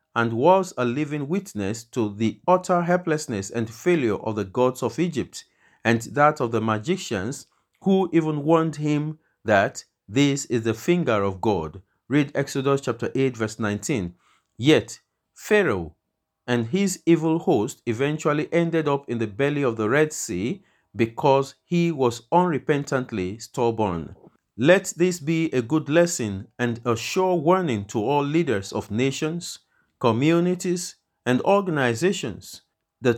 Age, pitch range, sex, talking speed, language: 50-69, 115-160 Hz, male, 140 wpm, English